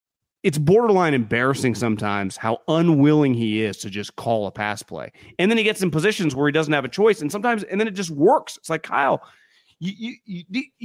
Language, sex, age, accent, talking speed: English, male, 30-49, American, 215 wpm